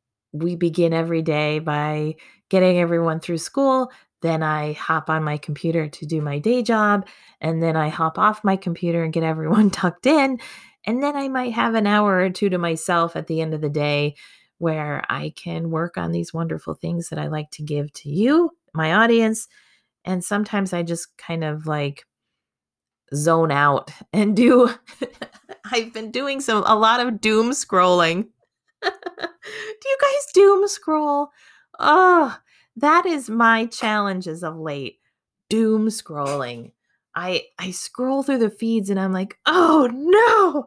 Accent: American